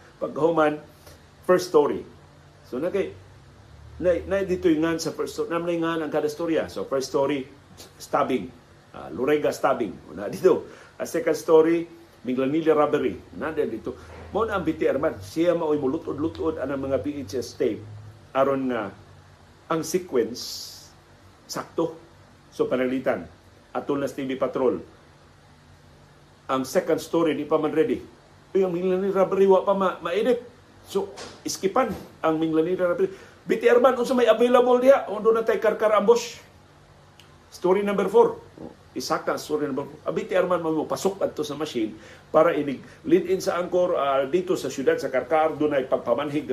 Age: 50-69